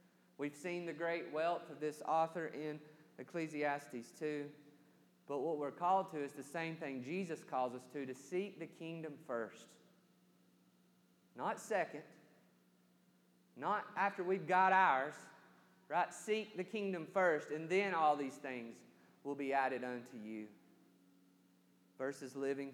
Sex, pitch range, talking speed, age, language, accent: male, 110-155 Hz, 140 wpm, 30-49, English, American